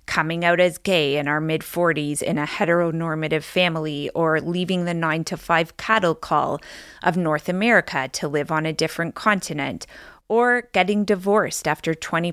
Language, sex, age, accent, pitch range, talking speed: English, female, 30-49, American, 155-190 Hz, 160 wpm